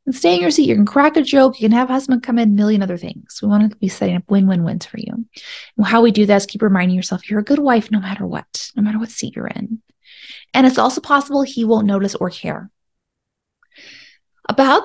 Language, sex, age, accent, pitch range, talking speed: English, female, 30-49, American, 200-265 Hz, 250 wpm